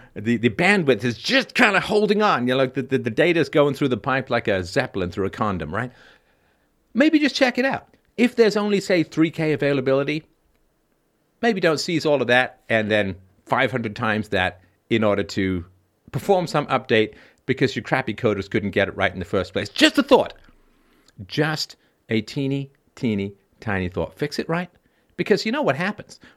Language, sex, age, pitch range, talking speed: English, male, 50-69, 110-160 Hz, 195 wpm